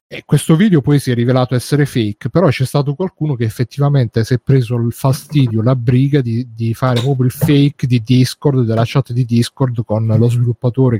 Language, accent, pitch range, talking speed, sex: Italian, native, 115-140 Hz, 200 wpm, male